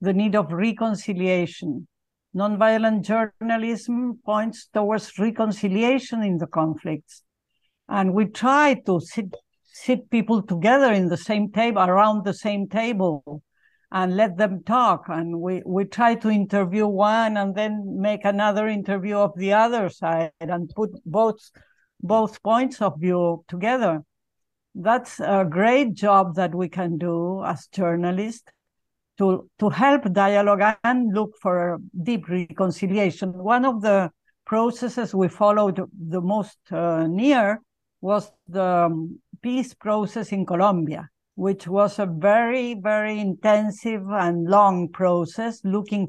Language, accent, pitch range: English, Spanish, 180-215 Hz